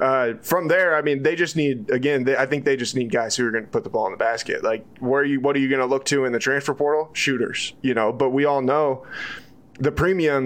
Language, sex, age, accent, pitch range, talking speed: English, male, 20-39, American, 120-135 Hz, 285 wpm